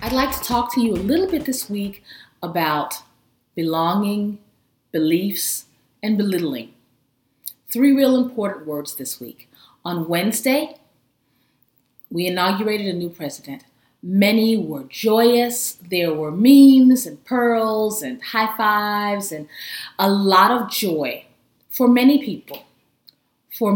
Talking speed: 125 wpm